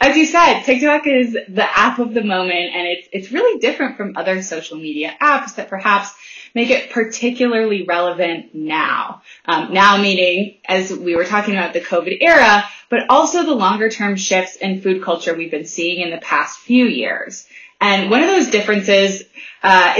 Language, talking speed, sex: English, 185 wpm, female